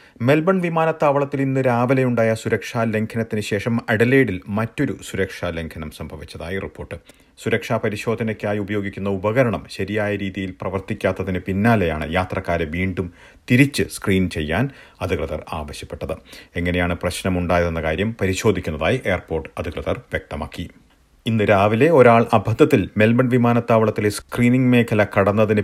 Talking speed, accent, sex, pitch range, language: 100 wpm, native, male, 90-115 Hz, Malayalam